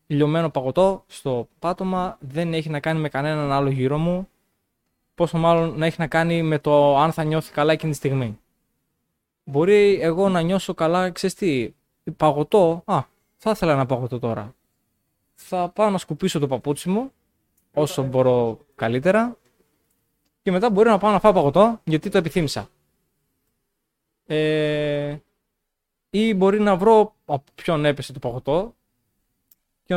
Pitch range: 130-175 Hz